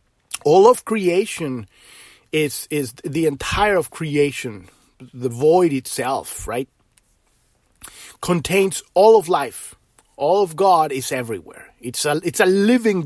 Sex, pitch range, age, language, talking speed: male, 155-220 Hz, 30-49, English, 125 wpm